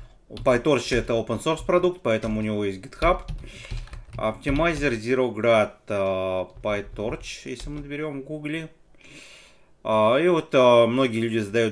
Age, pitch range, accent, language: 30-49, 110-155 Hz, native, Russian